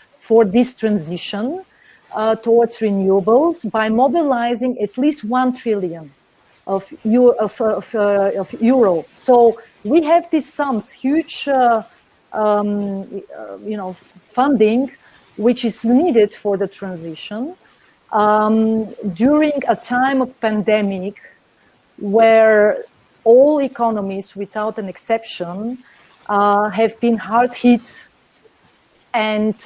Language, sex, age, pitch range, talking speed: English, female, 40-59, 205-255 Hz, 110 wpm